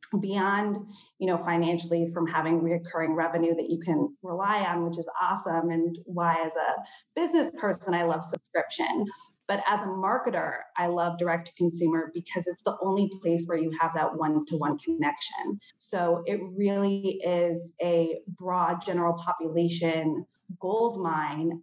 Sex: female